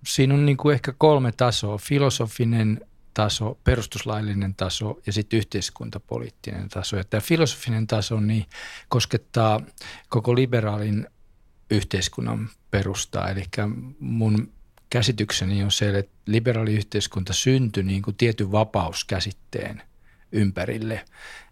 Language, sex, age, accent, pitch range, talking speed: Finnish, male, 50-69, native, 100-115 Hz, 105 wpm